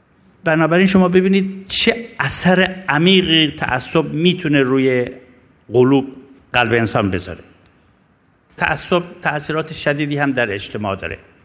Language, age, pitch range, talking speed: Persian, 50-69, 125-170 Hz, 105 wpm